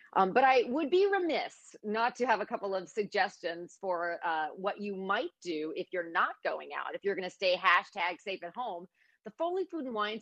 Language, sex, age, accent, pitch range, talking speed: English, female, 40-59, American, 185-260 Hz, 215 wpm